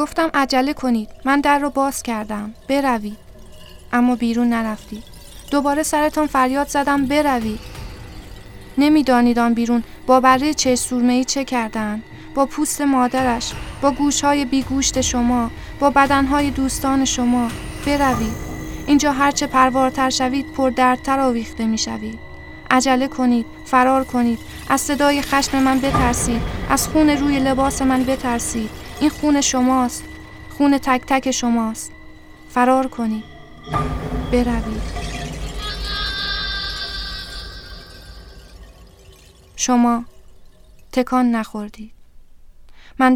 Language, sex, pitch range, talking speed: Persian, female, 235-285 Hz, 105 wpm